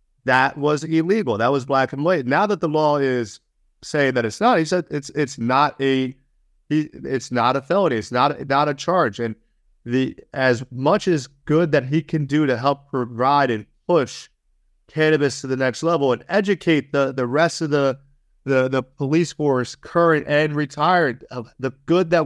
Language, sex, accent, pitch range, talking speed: English, male, American, 120-150 Hz, 190 wpm